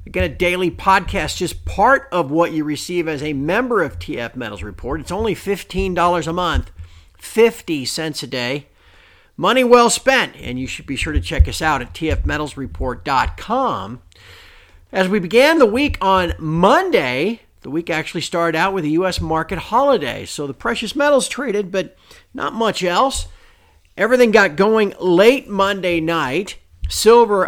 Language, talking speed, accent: English, 160 wpm, American